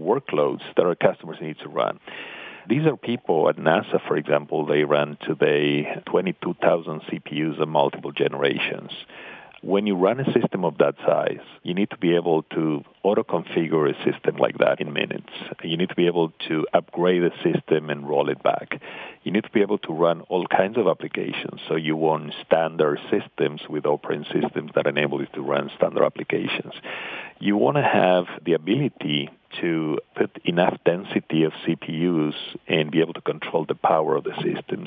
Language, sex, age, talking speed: English, male, 50-69, 180 wpm